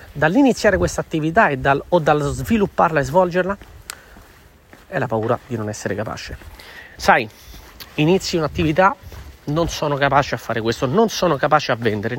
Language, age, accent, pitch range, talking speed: Italian, 40-59, native, 140-190 Hz, 145 wpm